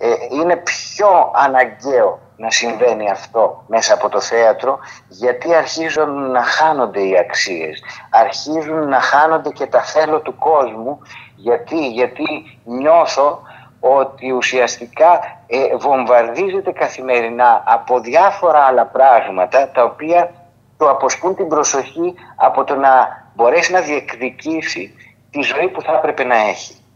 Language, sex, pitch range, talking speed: Greek, male, 130-165 Hz, 125 wpm